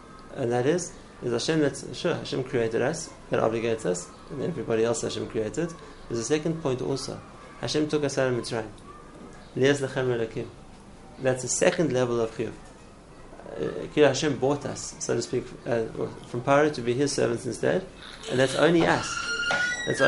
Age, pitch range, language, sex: 30-49, 125-150 Hz, English, male